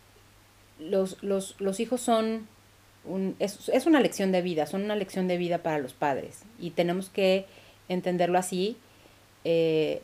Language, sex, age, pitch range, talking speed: Spanish, female, 30-49, 145-195 Hz, 155 wpm